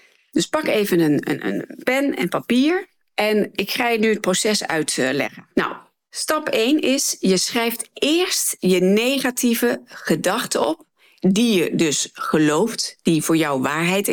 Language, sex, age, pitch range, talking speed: Dutch, female, 40-59, 180-270 Hz, 155 wpm